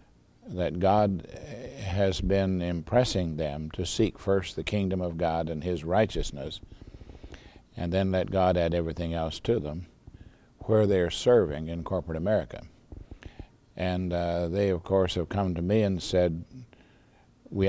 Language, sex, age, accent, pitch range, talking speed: English, male, 60-79, American, 85-100 Hz, 145 wpm